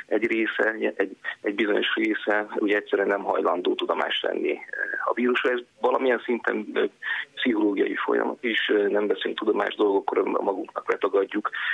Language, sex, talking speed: Hungarian, male, 145 wpm